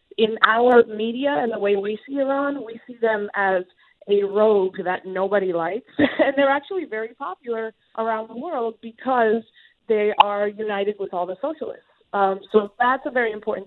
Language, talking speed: English, 175 wpm